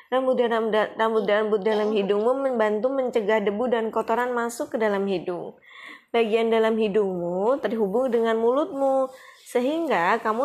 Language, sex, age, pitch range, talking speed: Indonesian, female, 20-39, 210-265 Hz, 130 wpm